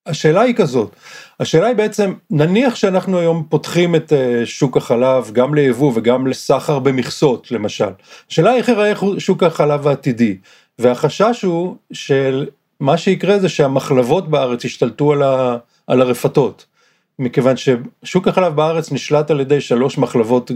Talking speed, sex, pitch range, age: 140 wpm, male, 125-170 Hz, 40-59